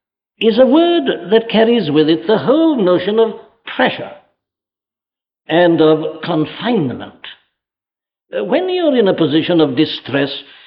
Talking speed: 125 wpm